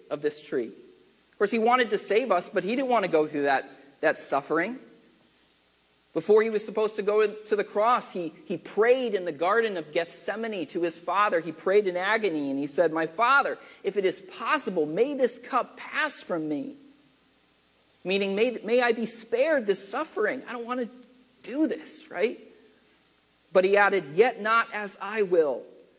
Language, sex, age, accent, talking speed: English, male, 40-59, American, 190 wpm